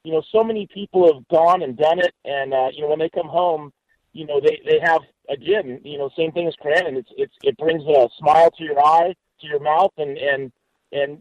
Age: 40-59